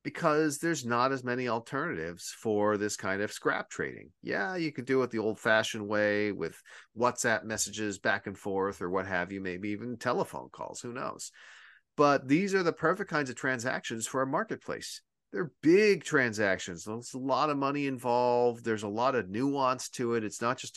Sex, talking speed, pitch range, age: male, 195 wpm, 105-140 Hz, 40-59